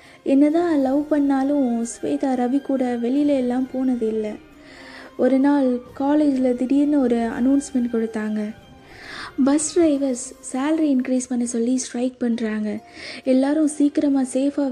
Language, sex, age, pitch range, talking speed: Tamil, female, 20-39, 240-275 Hz, 115 wpm